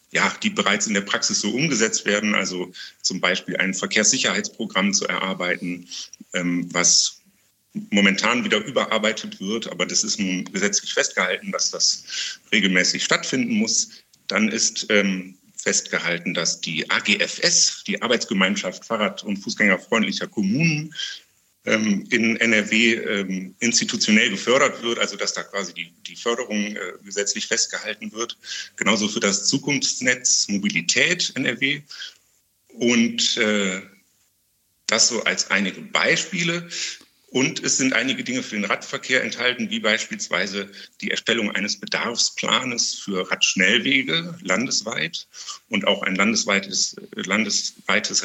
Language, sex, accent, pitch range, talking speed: German, male, German, 95-135 Hz, 115 wpm